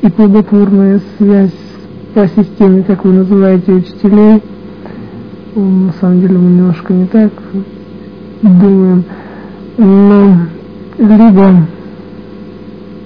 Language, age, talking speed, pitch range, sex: English, 50-69, 85 wpm, 185-200 Hz, male